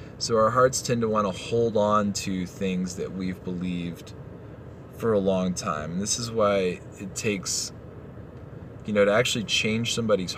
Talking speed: 175 wpm